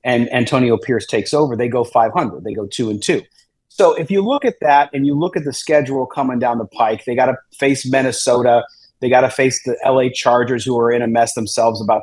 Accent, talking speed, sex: American, 240 wpm, male